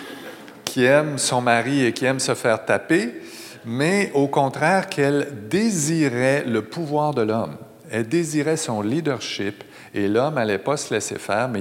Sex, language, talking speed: male, French, 160 wpm